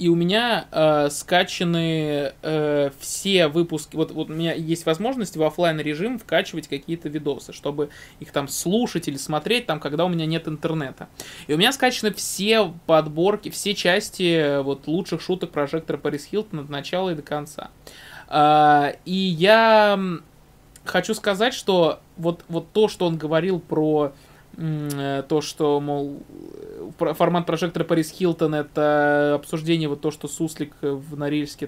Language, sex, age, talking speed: Russian, male, 20-39, 155 wpm